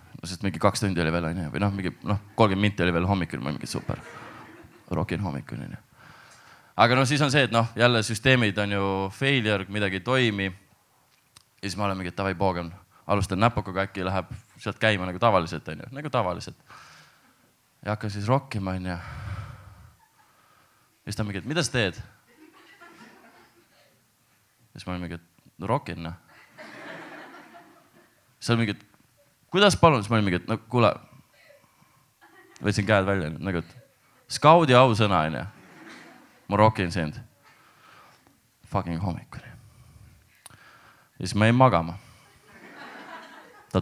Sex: male